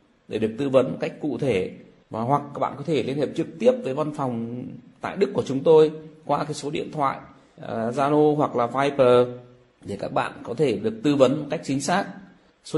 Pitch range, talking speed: 100-140 Hz, 215 wpm